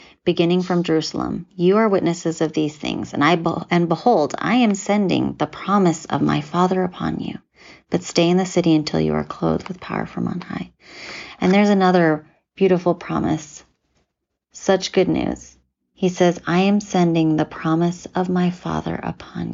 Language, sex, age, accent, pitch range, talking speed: English, female, 30-49, American, 165-195 Hz, 175 wpm